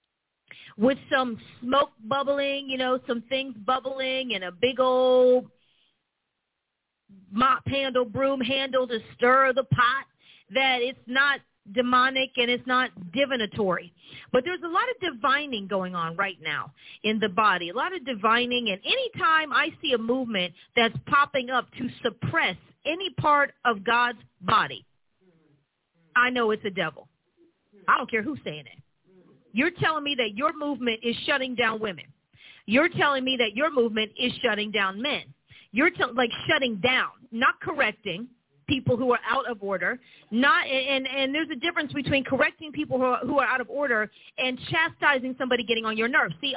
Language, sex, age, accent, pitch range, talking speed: English, female, 40-59, American, 220-280 Hz, 170 wpm